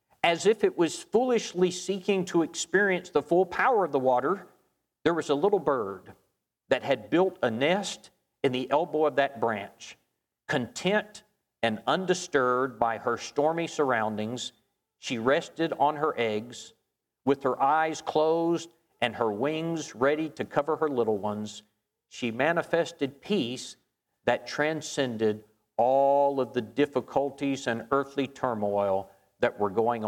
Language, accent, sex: English, American, male